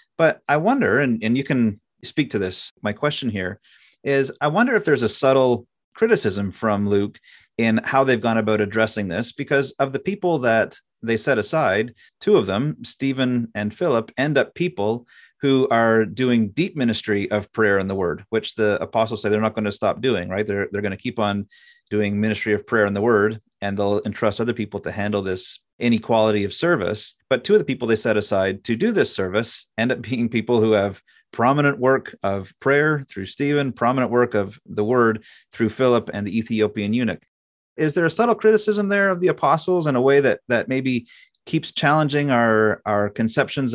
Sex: male